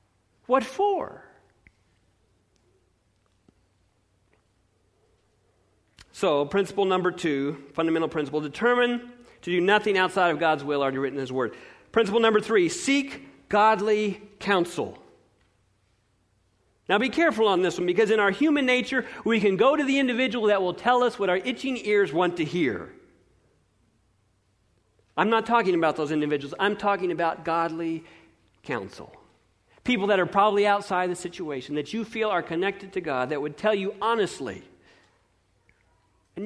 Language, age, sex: English, 40-59, male